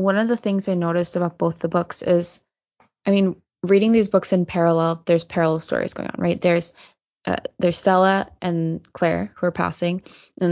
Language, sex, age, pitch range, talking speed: English, female, 20-39, 170-190 Hz, 195 wpm